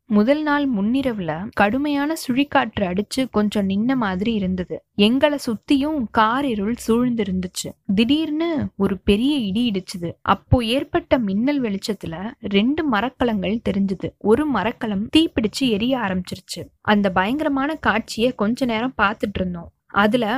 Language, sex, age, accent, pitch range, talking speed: Tamil, female, 20-39, native, 200-270 Hz, 120 wpm